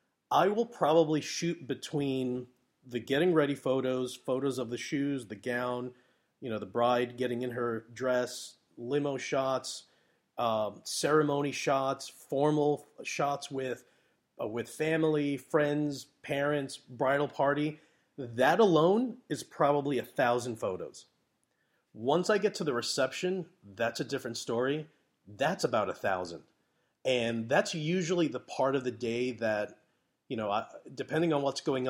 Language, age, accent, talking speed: English, 30-49, American, 140 wpm